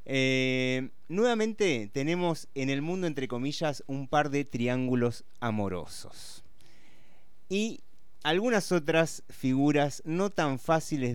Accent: Argentinian